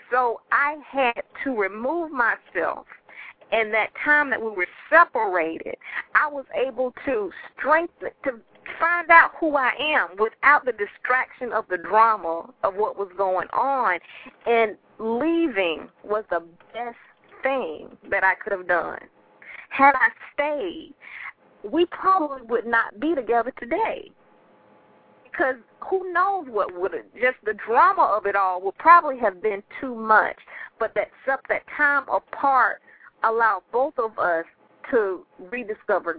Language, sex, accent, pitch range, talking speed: English, female, American, 215-300 Hz, 140 wpm